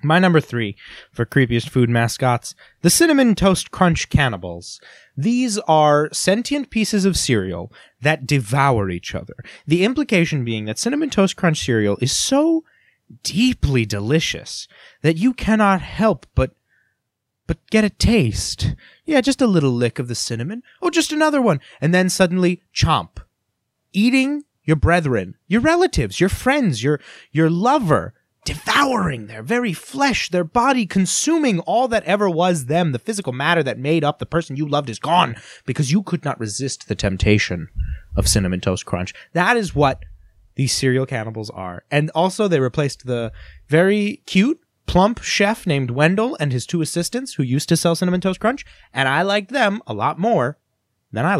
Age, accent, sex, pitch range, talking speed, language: 30-49, American, male, 125-205 Hz, 165 wpm, English